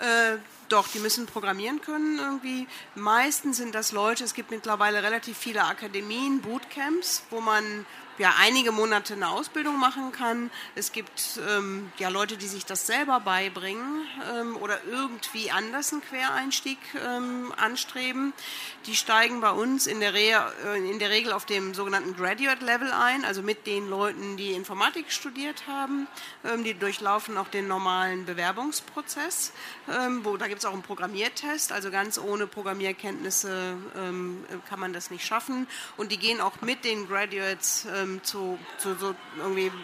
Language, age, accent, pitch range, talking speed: German, 50-69, German, 195-245 Hz, 160 wpm